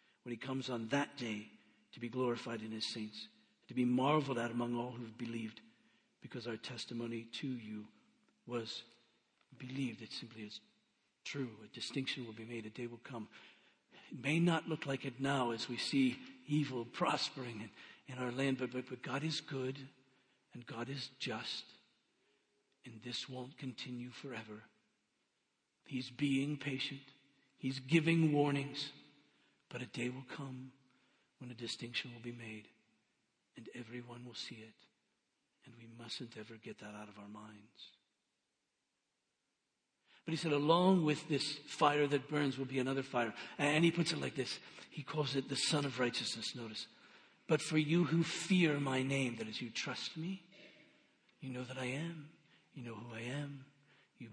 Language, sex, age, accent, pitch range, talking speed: English, male, 50-69, American, 115-140 Hz, 170 wpm